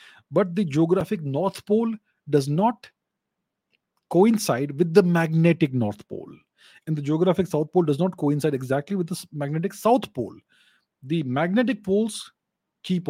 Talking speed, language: 140 wpm, English